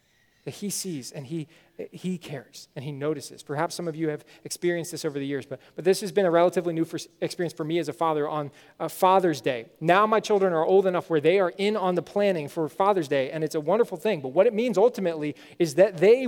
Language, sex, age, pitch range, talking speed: English, male, 20-39, 165-220 Hz, 250 wpm